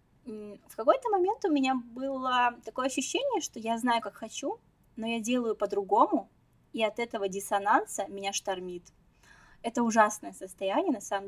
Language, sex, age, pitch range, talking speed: Russian, female, 20-39, 200-280 Hz, 150 wpm